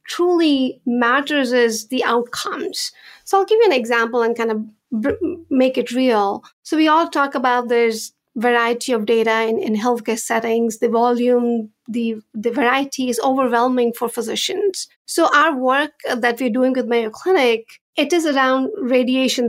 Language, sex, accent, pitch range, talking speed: English, female, Indian, 240-285 Hz, 160 wpm